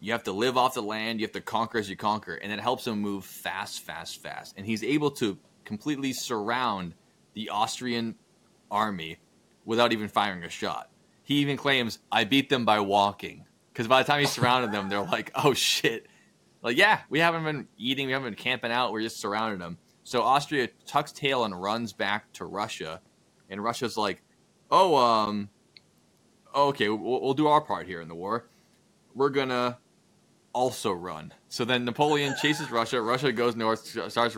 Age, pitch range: 20-39, 100-125 Hz